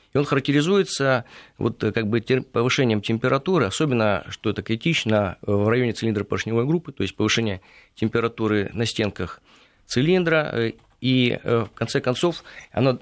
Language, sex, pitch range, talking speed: Russian, male, 105-130 Hz, 130 wpm